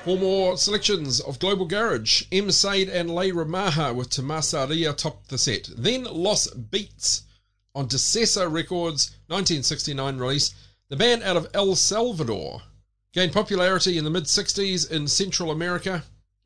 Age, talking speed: 40-59, 145 wpm